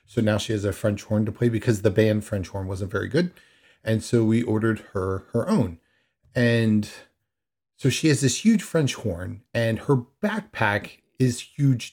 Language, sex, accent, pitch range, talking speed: English, male, American, 110-145 Hz, 185 wpm